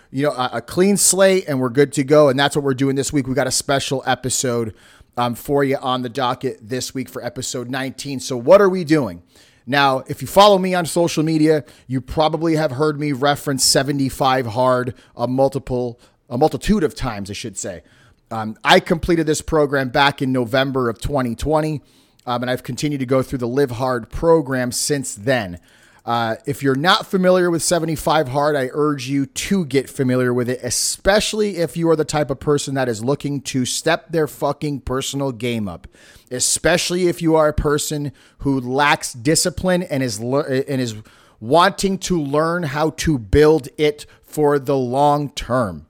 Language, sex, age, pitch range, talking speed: English, male, 30-49, 125-155 Hz, 190 wpm